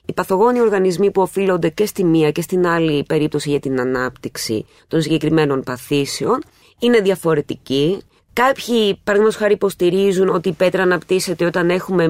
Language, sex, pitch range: Greek, female, 155-205 Hz